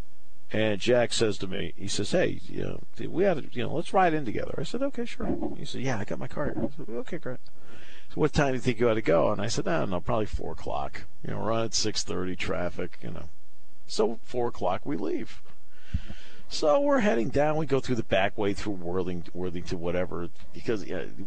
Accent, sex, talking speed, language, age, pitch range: American, male, 215 wpm, English, 50-69, 90-115 Hz